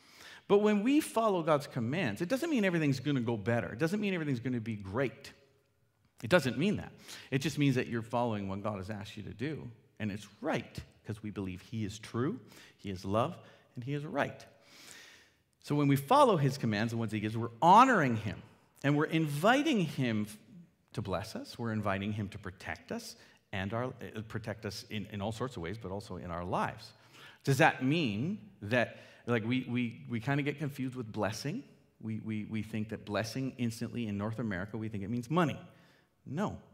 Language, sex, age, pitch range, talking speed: English, male, 40-59, 105-140 Hz, 205 wpm